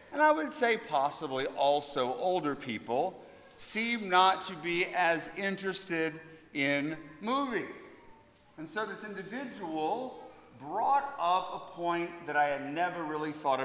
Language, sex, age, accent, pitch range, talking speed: English, male, 50-69, American, 165-215 Hz, 130 wpm